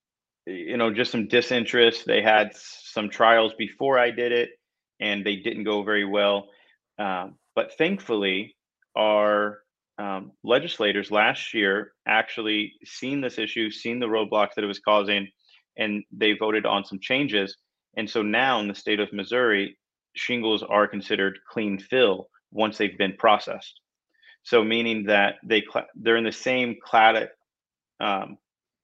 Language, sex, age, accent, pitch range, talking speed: English, male, 30-49, American, 100-115 Hz, 150 wpm